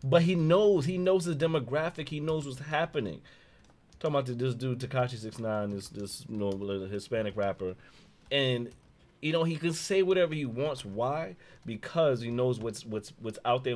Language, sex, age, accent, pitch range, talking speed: English, male, 30-49, American, 100-135 Hz, 190 wpm